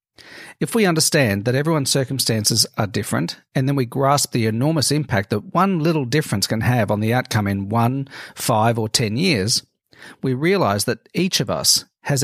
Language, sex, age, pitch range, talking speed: English, male, 40-59, 115-150 Hz, 180 wpm